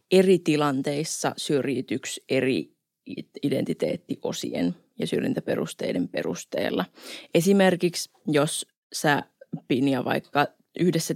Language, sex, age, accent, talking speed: Finnish, female, 20-39, native, 75 wpm